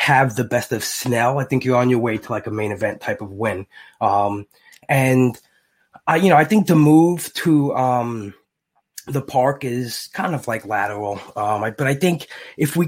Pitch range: 115-150 Hz